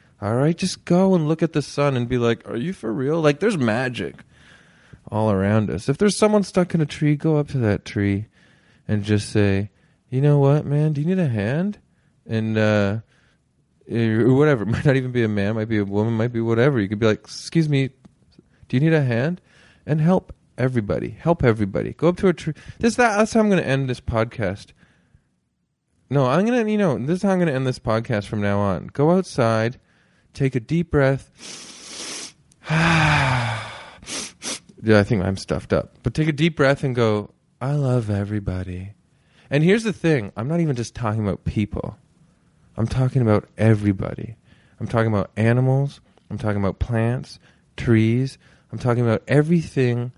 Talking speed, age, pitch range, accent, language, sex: 190 wpm, 30-49, 105-150 Hz, American, English, male